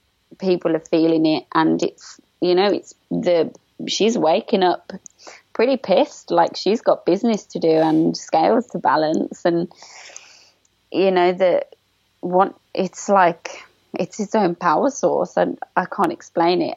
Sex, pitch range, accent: female, 165-195 Hz, British